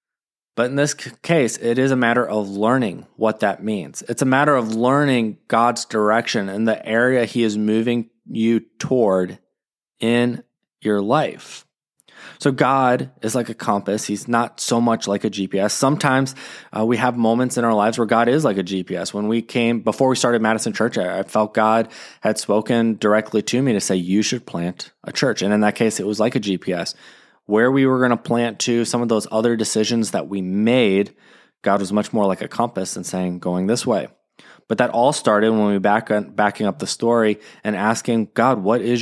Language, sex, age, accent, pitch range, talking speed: English, male, 20-39, American, 105-120 Hz, 205 wpm